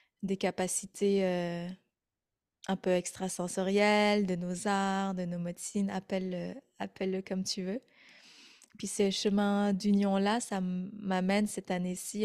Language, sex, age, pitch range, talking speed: French, female, 20-39, 180-210 Hz, 120 wpm